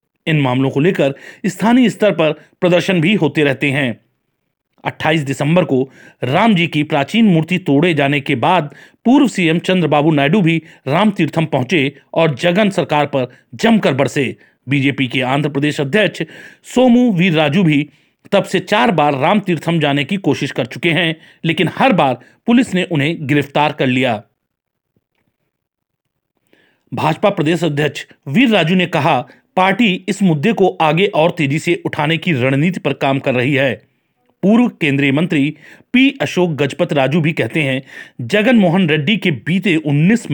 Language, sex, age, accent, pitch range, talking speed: Hindi, male, 40-59, native, 145-185 Hz, 160 wpm